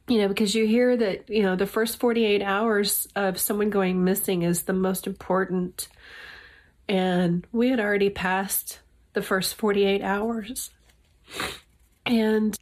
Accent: American